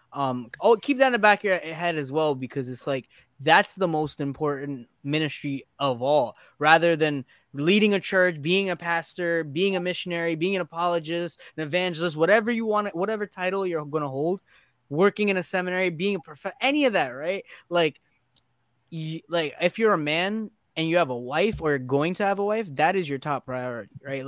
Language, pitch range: English, 135-180 Hz